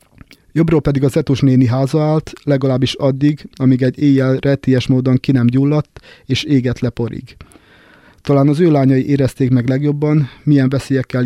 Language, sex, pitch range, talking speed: Hungarian, male, 130-145 Hz, 150 wpm